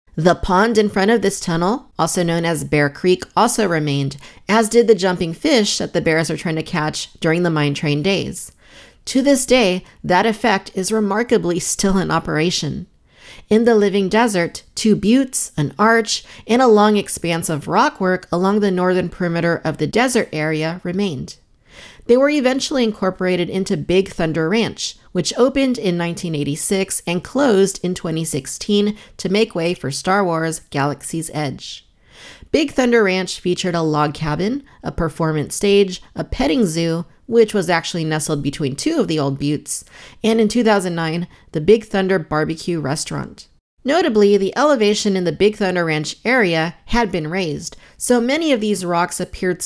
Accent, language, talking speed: American, English, 165 wpm